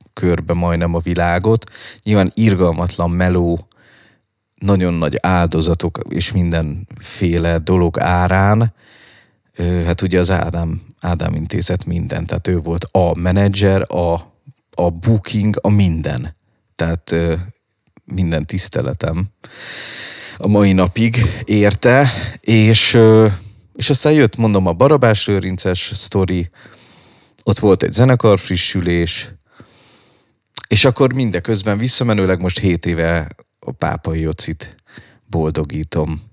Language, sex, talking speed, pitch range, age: Hungarian, male, 105 wpm, 85-110 Hz, 30-49